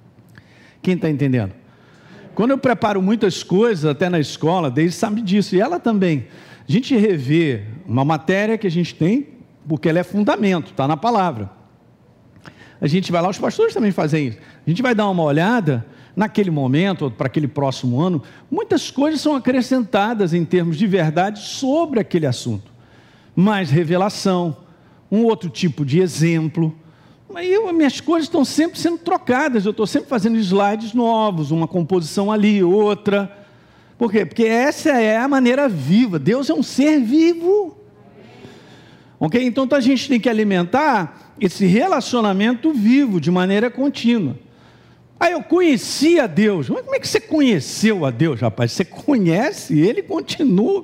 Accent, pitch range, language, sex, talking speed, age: Brazilian, 165-255 Hz, Portuguese, male, 160 wpm, 50-69